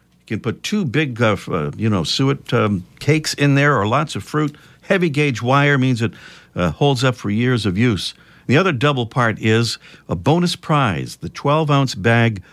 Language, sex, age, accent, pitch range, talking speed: English, male, 50-69, American, 105-150 Hz, 195 wpm